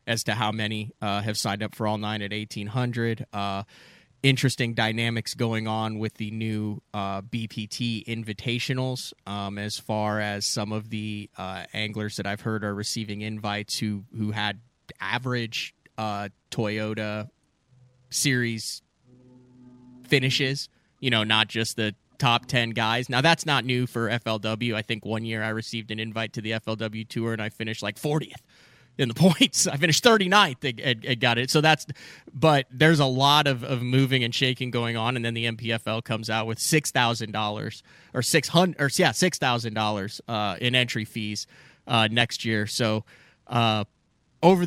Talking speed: 175 wpm